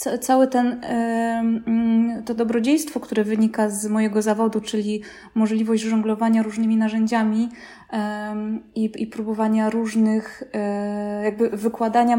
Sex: female